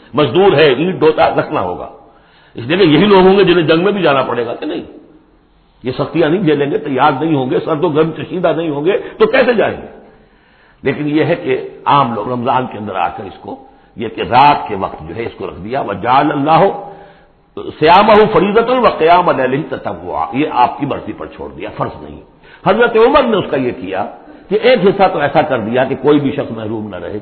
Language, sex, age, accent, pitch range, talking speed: English, male, 60-79, Indian, 145-215 Hz, 130 wpm